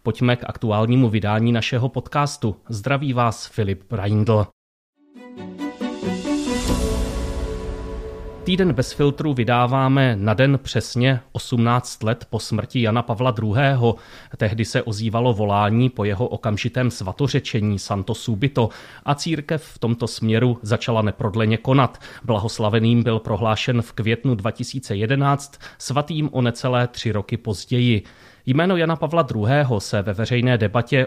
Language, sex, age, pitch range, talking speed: Czech, male, 30-49, 110-135 Hz, 120 wpm